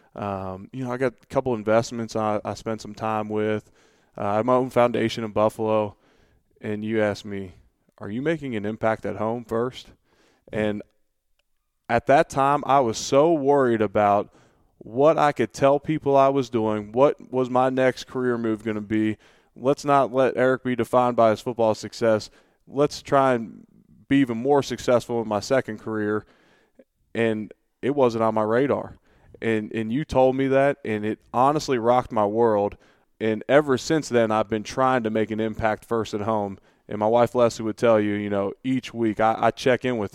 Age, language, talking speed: 20-39, English, 195 wpm